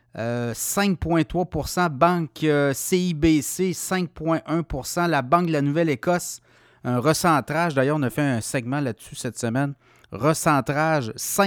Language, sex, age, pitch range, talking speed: French, male, 30-49, 130-160 Hz, 120 wpm